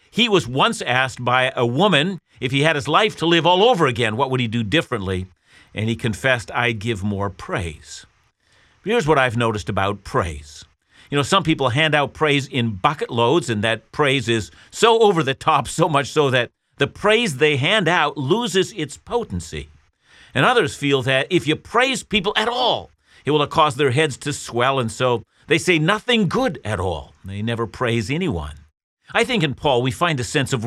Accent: American